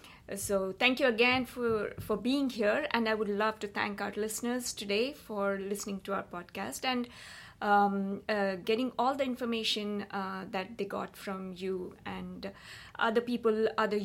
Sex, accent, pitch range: female, Indian, 195-230 Hz